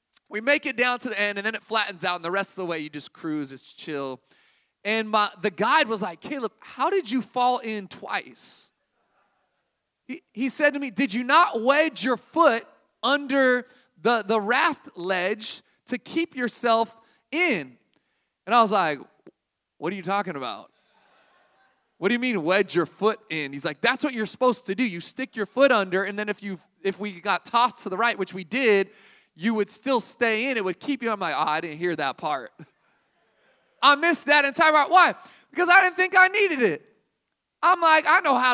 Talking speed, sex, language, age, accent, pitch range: 210 wpm, male, English, 20-39, American, 200-270 Hz